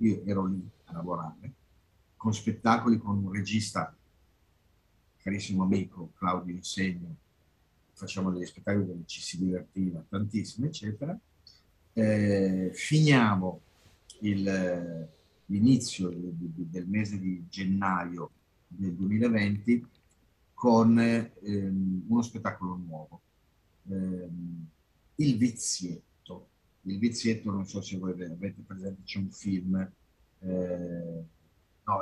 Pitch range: 90-110 Hz